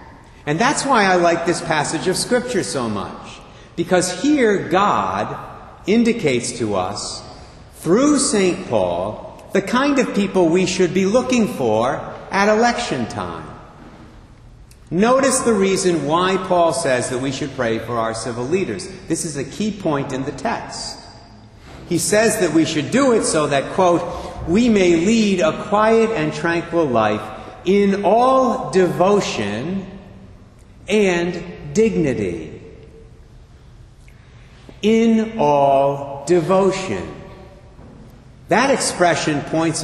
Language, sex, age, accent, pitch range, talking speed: English, male, 50-69, American, 140-200 Hz, 125 wpm